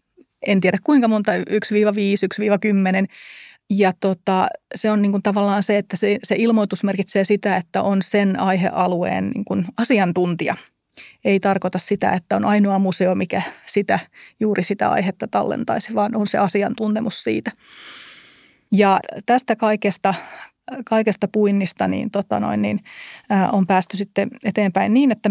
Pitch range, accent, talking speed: 190-215 Hz, native, 140 wpm